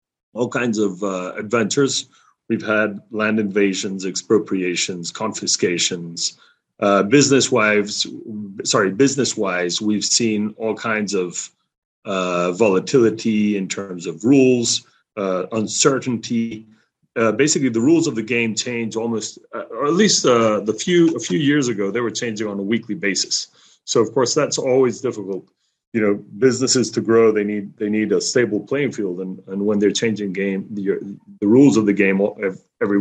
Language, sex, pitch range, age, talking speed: English, male, 100-120 Hz, 30-49, 160 wpm